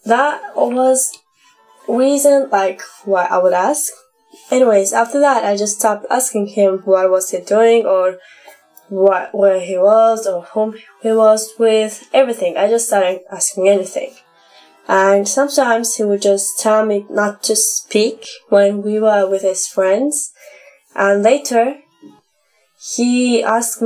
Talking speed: 140 wpm